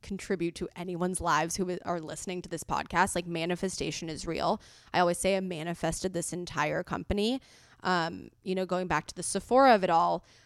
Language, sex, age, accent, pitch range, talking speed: English, female, 20-39, American, 165-195 Hz, 190 wpm